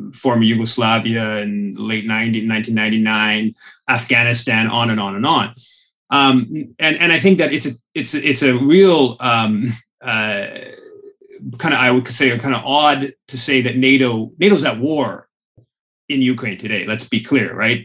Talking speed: 165 wpm